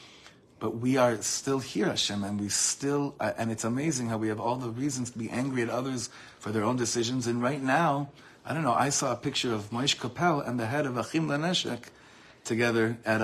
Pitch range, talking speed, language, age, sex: 110-140 Hz, 220 wpm, English, 30-49, male